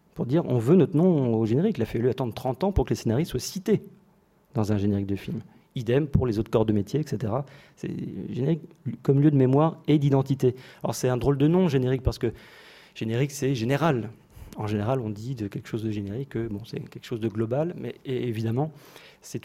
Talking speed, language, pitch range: 220 wpm, French, 115-145 Hz